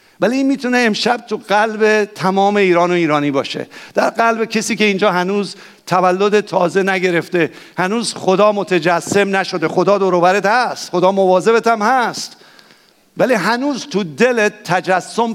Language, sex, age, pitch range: English, male, 50-69, 165-210 Hz